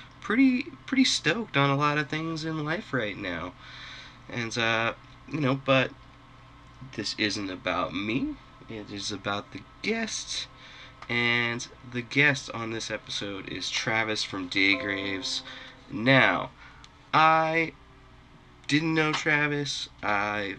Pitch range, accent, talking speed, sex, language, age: 115-140 Hz, American, 125 wpm, male, English, 20-39